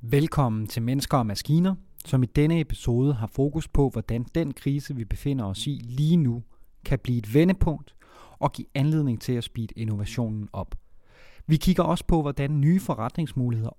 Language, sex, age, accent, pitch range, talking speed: Danish, male, 30-49, native, 115-155 Hz, 175 wpm